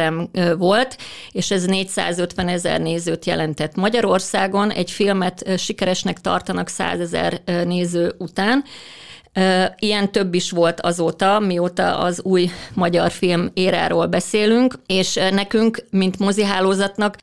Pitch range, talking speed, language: 180-205 Hz, 110 wpm, Hungarian